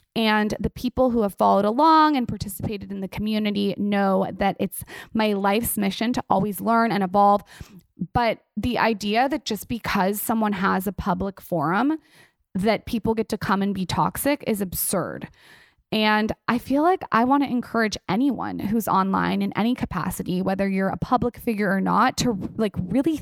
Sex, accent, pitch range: female, American, 195-240 Hz